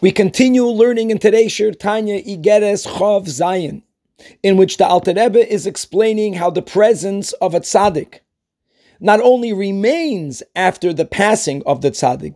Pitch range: 170-215 Hz